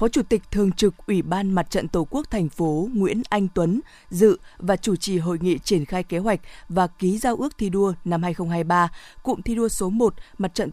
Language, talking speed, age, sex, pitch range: Vietnamese, 230 wpm, 20-39, female, 175-220 Hz